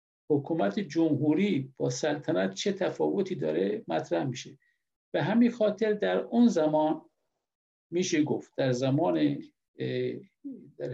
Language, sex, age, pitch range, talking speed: Persian, male, 50-69, 140-200 Hz, 110 wpm